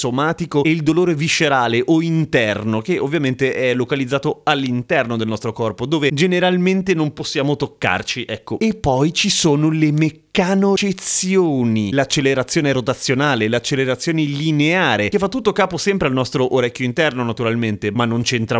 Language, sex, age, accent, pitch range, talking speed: Italian, male, 30-49, native, 125-170 Hz, 140 wpm